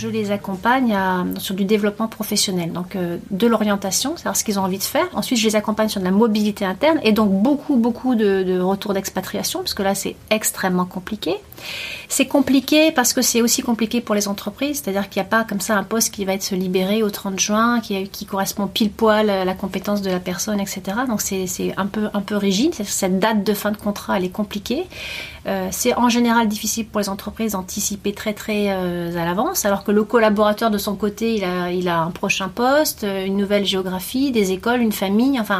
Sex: female